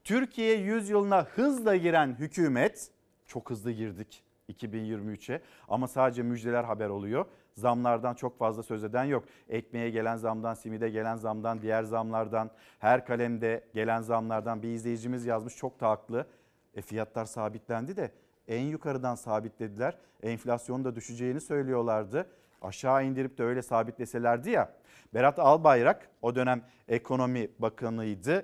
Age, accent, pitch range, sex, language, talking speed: 50-69, native, 115-145 Hz, male, Turkish, 130 wpm